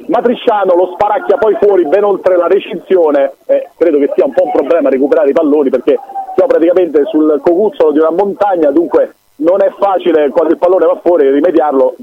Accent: native